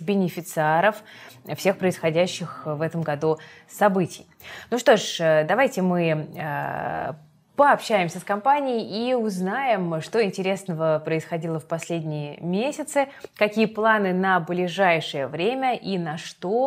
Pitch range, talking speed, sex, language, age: 160-200 Hz, 115 wpm, female, Russian, 20-39